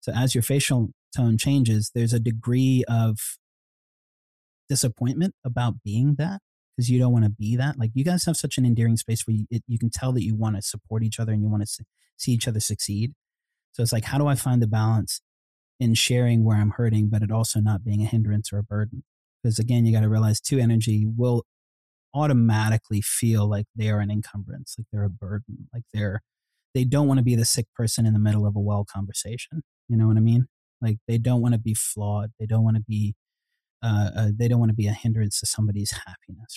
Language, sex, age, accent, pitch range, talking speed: English, male, 30-49, American, 105-120 Hz, 225 wpm